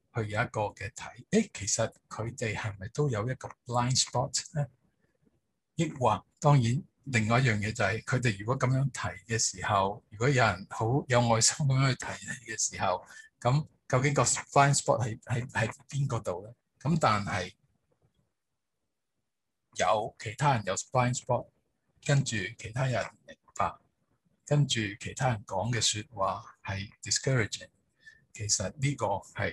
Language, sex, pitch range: Chinese, male, 110-140 Hz